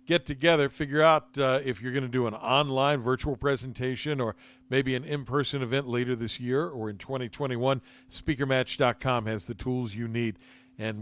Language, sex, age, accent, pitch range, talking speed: English, male, 50-69, American, 125-155 Hz, 175 wpm